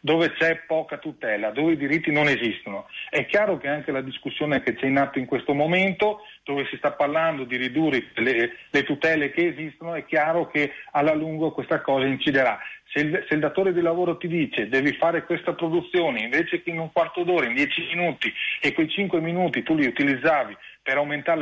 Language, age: Italian, 40-59